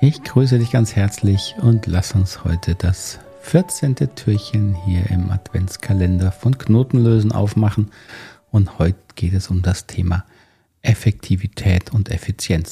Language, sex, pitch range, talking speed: German, male, 95-120 Hz, 130 wpm